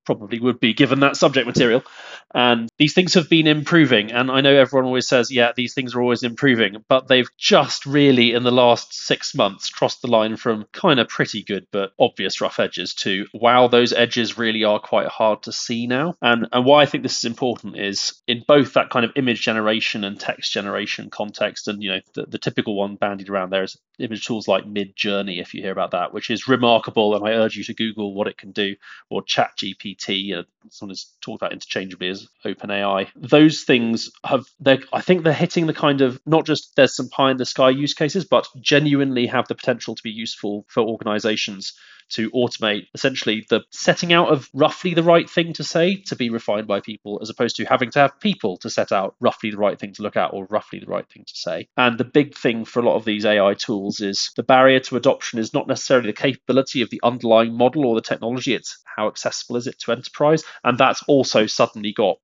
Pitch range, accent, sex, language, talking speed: 110-135 Hz, British, male, English, 225 wpm